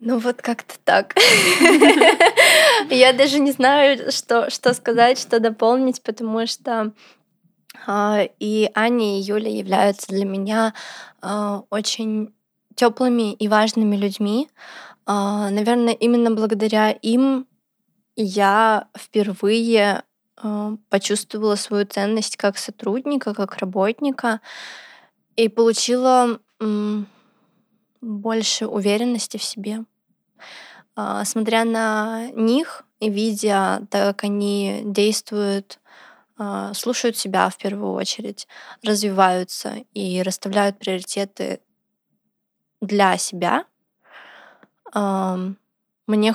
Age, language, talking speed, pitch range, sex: 20-39, Russian, 85 wpm, 205-235 Hz, female